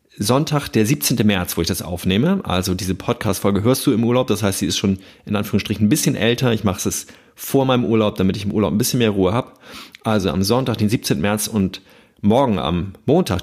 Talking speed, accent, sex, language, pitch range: 225 wpm, German, male, German, 95-125 Hz